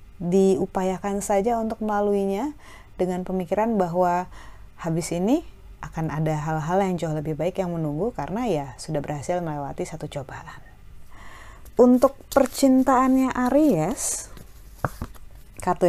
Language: Indonesian